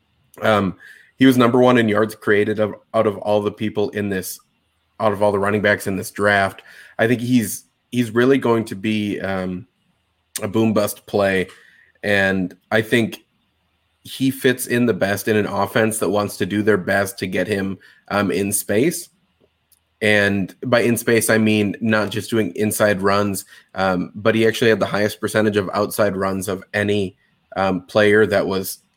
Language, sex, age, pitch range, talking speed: English, male, 20-39, 95-115 Hz, 185 wpm